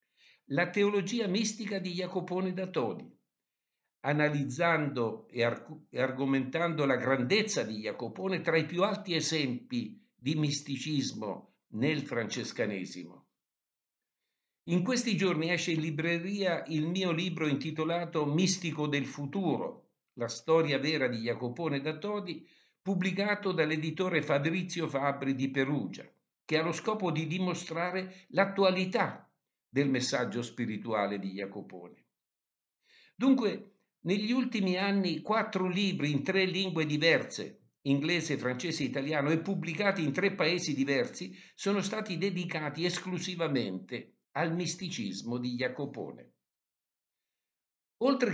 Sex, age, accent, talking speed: male, 60-79, native, 115 wpm